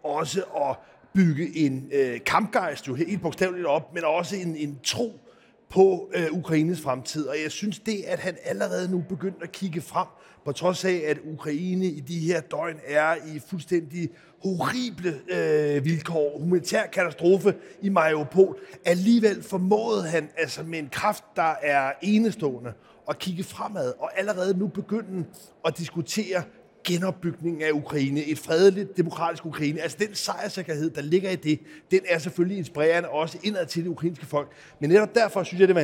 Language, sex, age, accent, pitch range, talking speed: Danish, male, 30-49, native, 155-185 Hz, 160 wpm